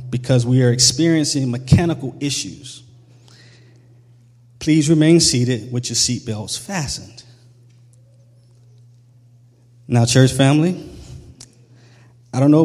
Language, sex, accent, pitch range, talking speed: English, male, American, 120-150 Hz, 90 wpm